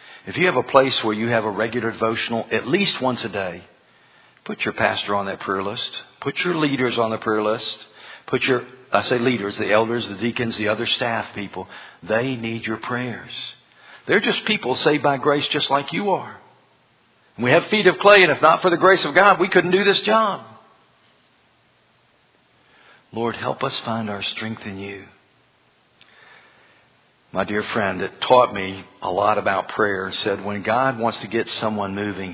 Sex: male